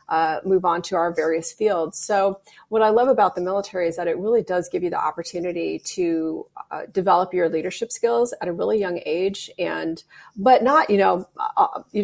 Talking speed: 205 wpm